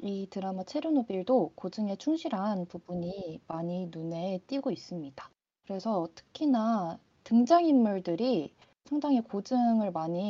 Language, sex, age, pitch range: Korean, female, 20-39, 175-250 Hz